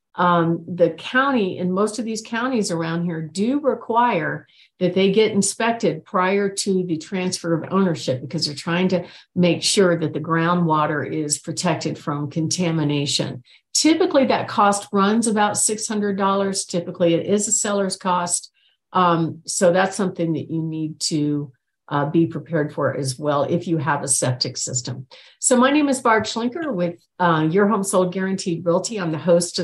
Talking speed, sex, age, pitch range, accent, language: 170 wpm, female, 50-69, 160-205 Hz, American, English